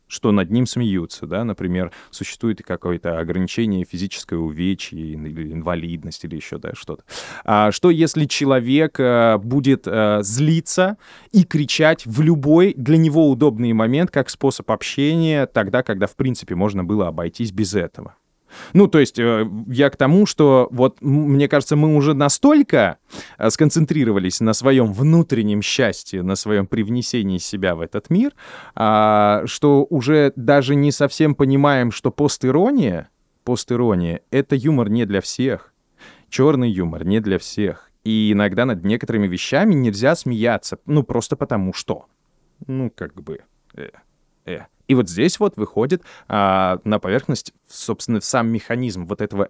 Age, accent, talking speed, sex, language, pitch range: 20-39, native, 140 wpm, male, Russian, 100-145 Hz